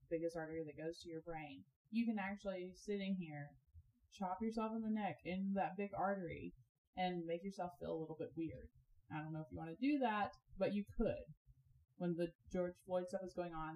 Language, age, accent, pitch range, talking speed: English, 10-29, American, 150-195 Hz, 220 wpm